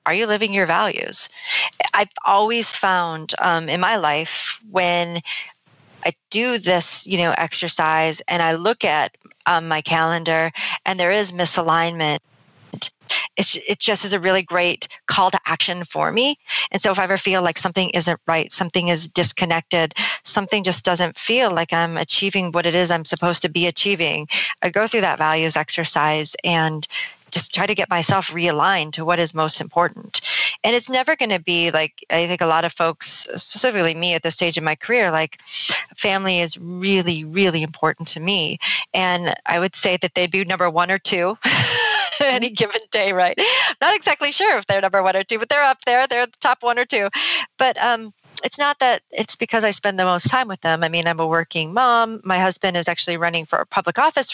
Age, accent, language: 30-49, American, English